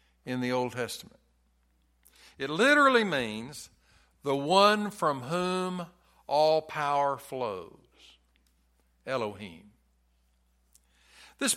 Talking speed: 85 wpm